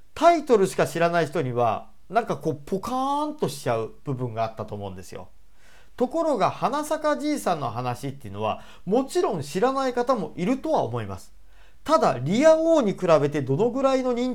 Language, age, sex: Japanese, 40-59, male